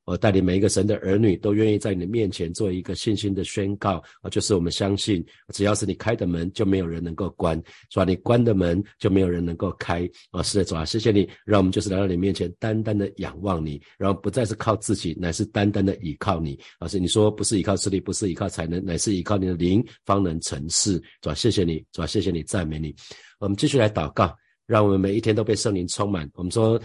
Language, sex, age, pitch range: Chinese, male, 50-69, 90-105 Hz